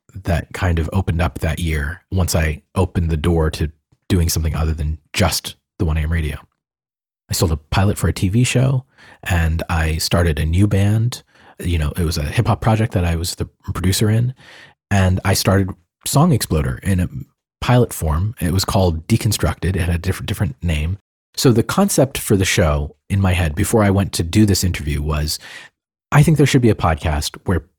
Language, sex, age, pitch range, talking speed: English, male, 30-49, 85-110 Hz, 200 wpm